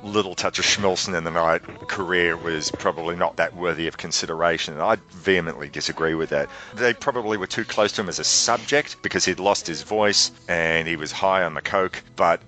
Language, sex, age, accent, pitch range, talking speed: English, male, 40-59, Australian, 85-100 Hz, 210 wpm